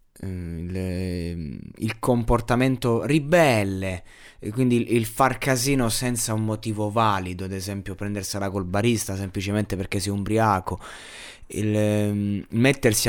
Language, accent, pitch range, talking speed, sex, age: Italian, native, 105-125 Hz, 100 wpm, male, 20-39